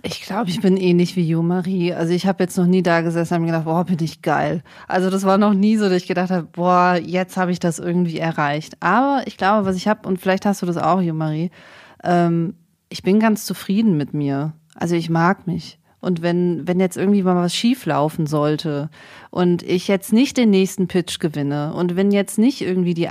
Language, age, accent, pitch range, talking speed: German, 30-49, German, 165-200 Hz, 225 wpm